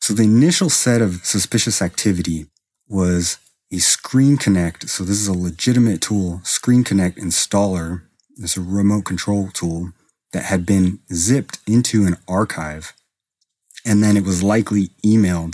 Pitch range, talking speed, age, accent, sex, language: 90-110 Hz, 145 wpm, 30-49, American, male, English